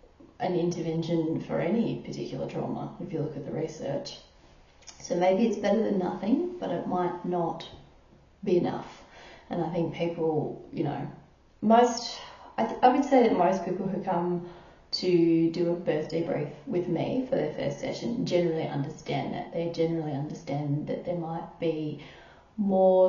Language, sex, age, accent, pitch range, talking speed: English, female, 30-49, Australian, 165-195 Hz, 165 wpm